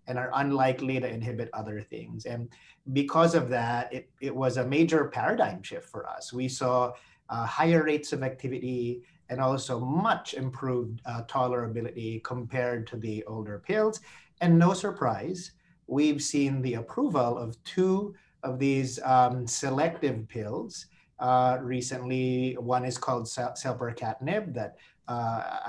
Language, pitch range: English, 120-150 Hz